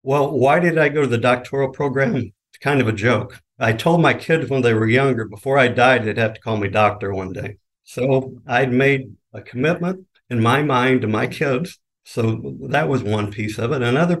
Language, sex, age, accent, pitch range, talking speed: English, male, 50-69, American, 110-130 Hz, 220 wpm